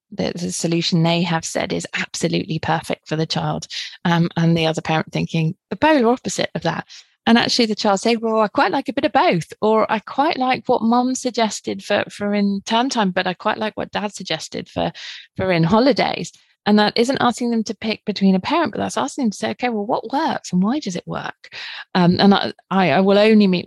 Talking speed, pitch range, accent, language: 225 wpm, 175-215 Hz, British, English